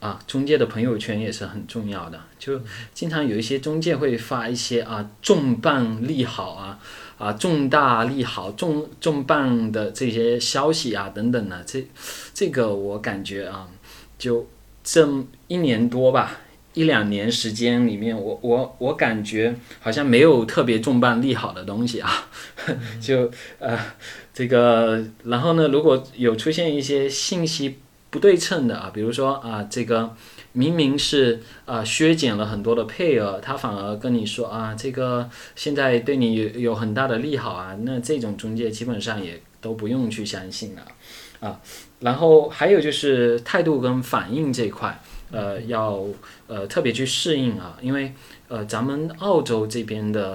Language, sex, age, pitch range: Chinese, male, 20-39, 110-135 Hz